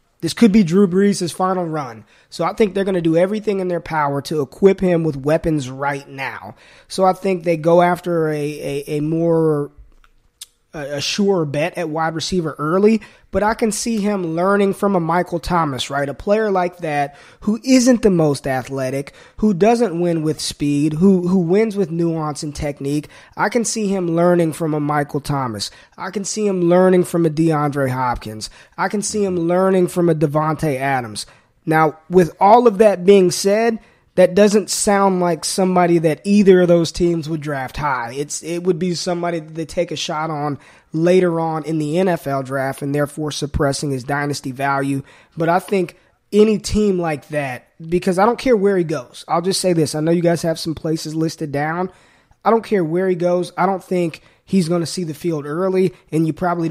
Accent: American